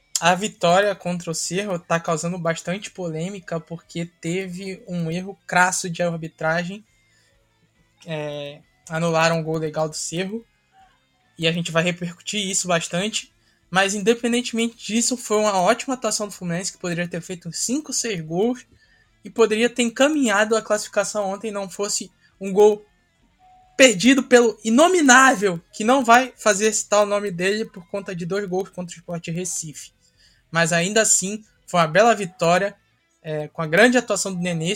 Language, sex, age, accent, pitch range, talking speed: Portuguese, male, 10-29, Brazilian, 170-215 Hz, 160 wpm